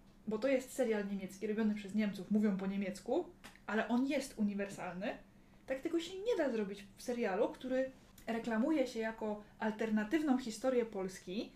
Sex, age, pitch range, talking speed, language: female, 20-39, 210-265 Hz, 155 wpm, Polish